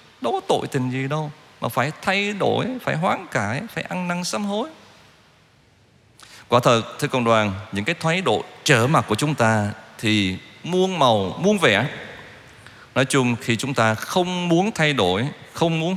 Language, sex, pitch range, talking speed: Vietnamese, male, 105-155 Hz, 180 wpm